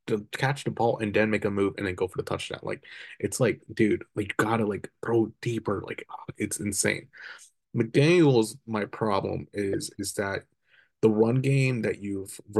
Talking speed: 185 wpm